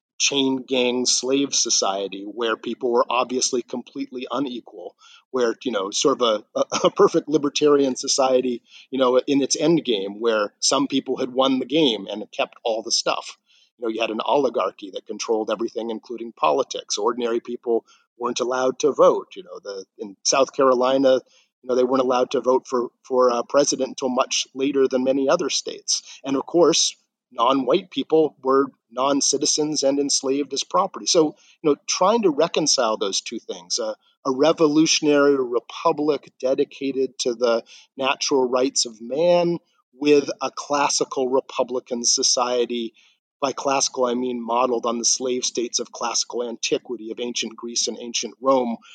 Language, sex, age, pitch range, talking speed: English, male, 40-59, 125-145 Hz, 165 wpm